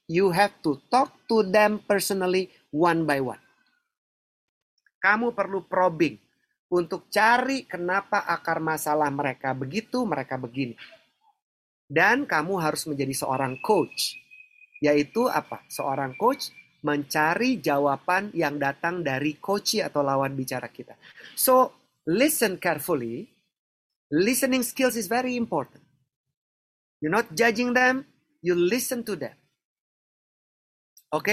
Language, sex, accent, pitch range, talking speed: Indonesian, male, native, 145-210 Hz, 115 wpm